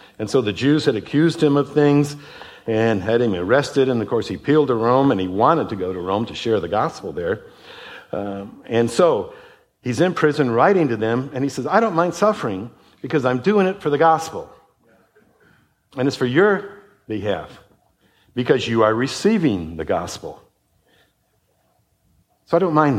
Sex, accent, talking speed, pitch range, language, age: male, American, 185 wpm, 100-145 Hz, English, 60-79